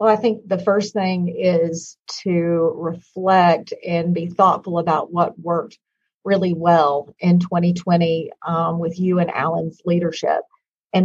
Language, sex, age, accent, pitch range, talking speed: English, female, 40-59, American, 170-200 Hz, 140 wpm